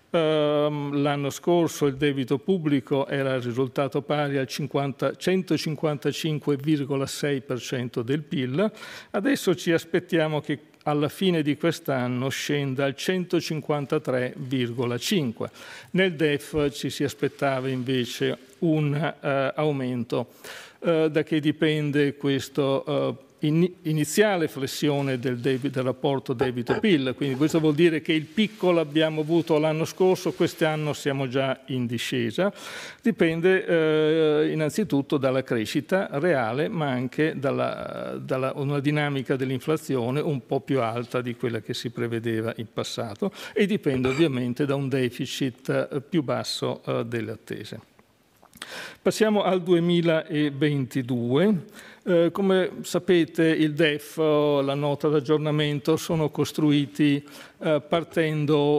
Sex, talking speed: male, 110 wpm